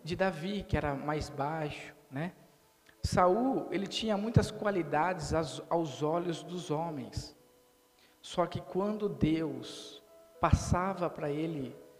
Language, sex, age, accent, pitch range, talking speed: Portuguese, male, 50-69, Brazilian, 145-185 Hz, 120 wpm